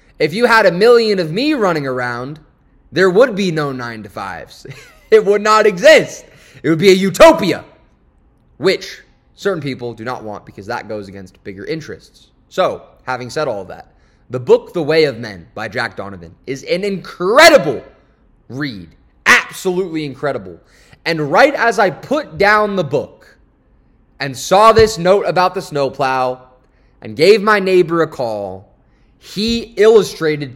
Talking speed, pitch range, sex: 155 wpm, 135-195 Hz, male